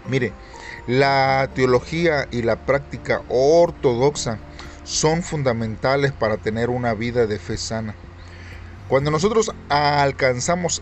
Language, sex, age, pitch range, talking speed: Spanish, male, 40-59, 110-155 Hz, 105 wpm